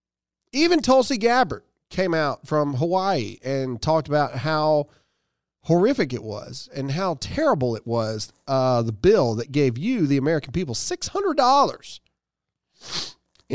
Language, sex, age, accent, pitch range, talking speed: English, male, 40-59, American, 115-185 Hz, 130 wpm